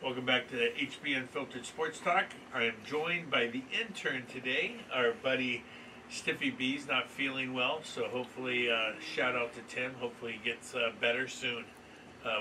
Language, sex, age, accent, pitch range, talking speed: English, male, 50-69, American, 120-135 Hz, 175 wpm